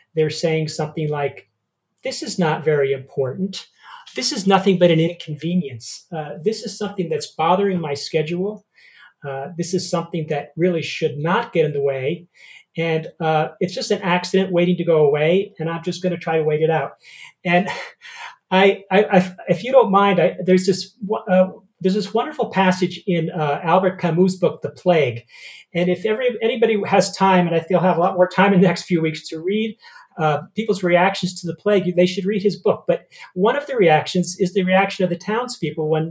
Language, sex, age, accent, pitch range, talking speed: English, male, 40-59, American, 160-200 Hz, 200 wpm